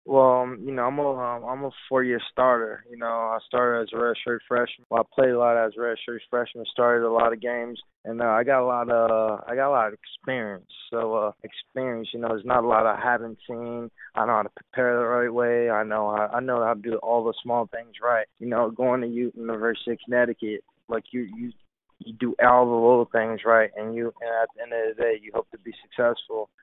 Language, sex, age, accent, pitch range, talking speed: English, male, 20-39, American, 110-120 Hz, 250 wpm